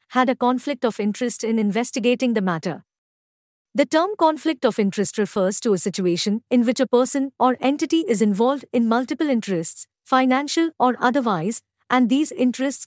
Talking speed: 165 wpm